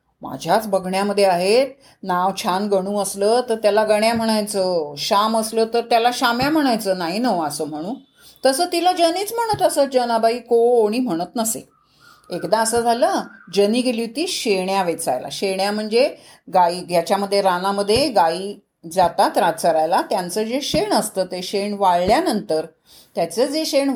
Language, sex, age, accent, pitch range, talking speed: Marathi, female, 30-49, native, 195-270 Hz, 140 wpm